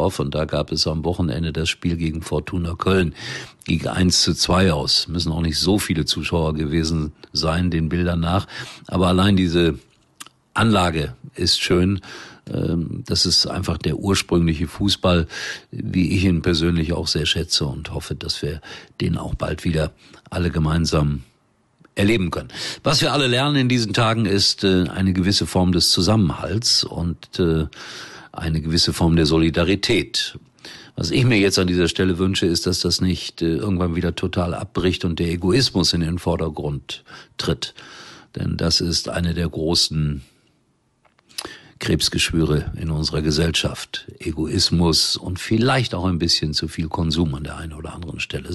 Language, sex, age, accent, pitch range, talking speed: German, male, 50-69, German, 80-95 Hz, 155 wpm